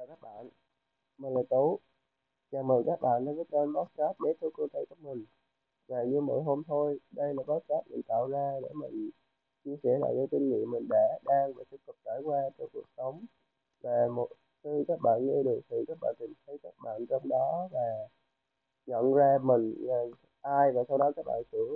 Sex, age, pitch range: male, 20-39, 125-145 Hz